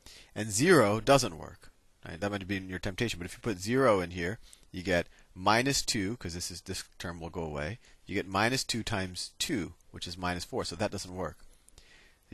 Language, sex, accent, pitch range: English, male, American, 85-115 Hz